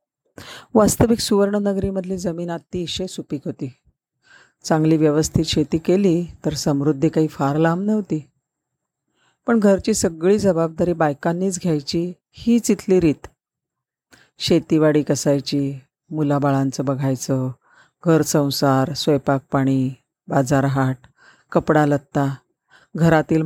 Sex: female